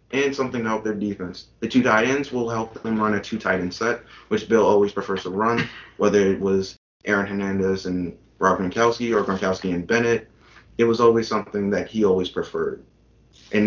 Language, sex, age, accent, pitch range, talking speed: English, male, 20-39, American, 100-120 Hz, 200 wpm